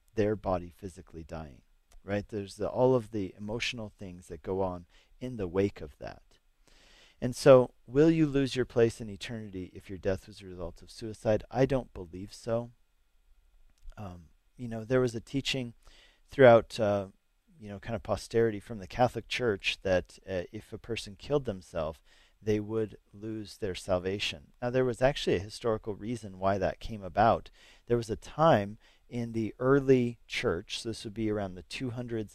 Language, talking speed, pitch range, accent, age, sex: English, 180 wpm, 95-120 Hz, American, 40-59, male